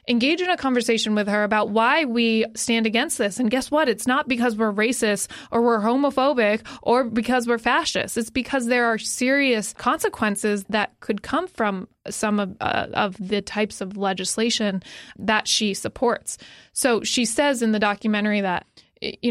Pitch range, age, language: 205-240 Hz, 20-39, English